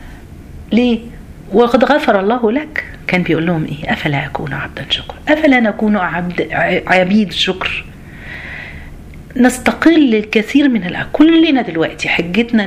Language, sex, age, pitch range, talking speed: Arabic, female, 40-59, 150-240 Hz, 115 wpm